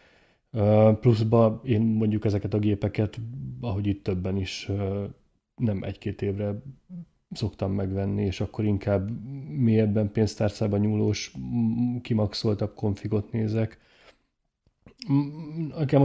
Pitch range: 100-115 Hz